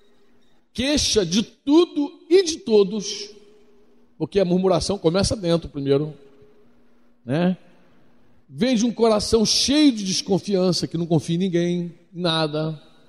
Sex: male